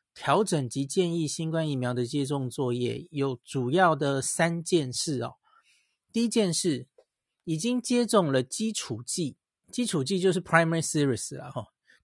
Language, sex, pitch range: Chinese, male, 135-190 Hz